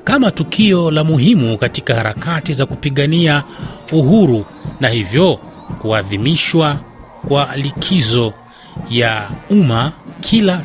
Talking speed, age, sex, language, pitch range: 95 wpm, 30-49, male, Swahili, 125-175 Hz